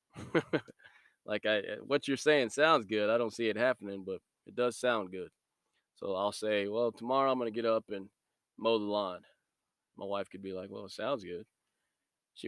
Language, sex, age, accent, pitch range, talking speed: English, male, 20-39, American, 100-120 Hz, 195 wpm